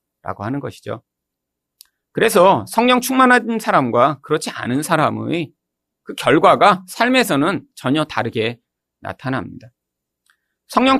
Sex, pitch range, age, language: male, 110-175 Hz, 40-59, Korean